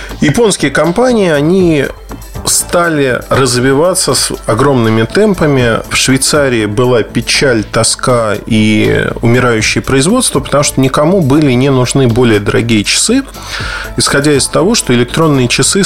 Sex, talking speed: male, 115 wpm